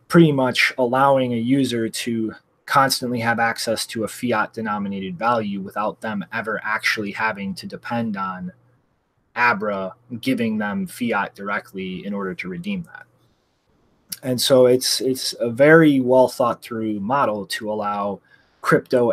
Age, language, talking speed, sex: 30-49, English, 140 wpm, male